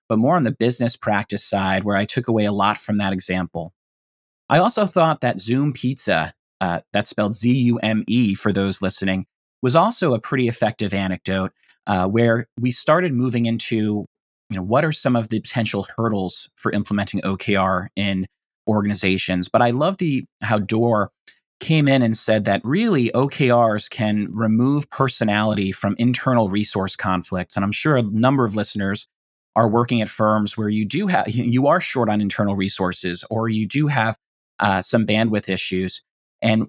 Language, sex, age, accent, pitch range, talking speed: English, male, 30-49, American, 100-120 Hz, 170 wpm